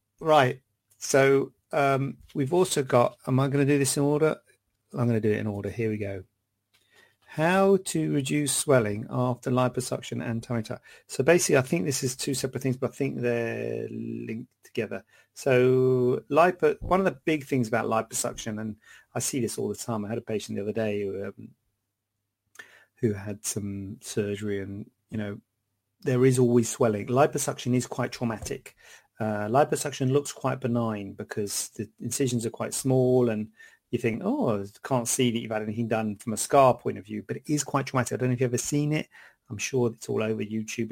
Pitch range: 110-140 Hz